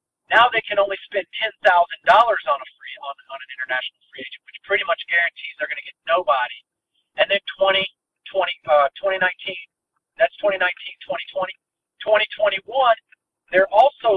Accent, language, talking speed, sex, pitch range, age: American, English, 155 wpm, male, 185-240 Hz, 50-69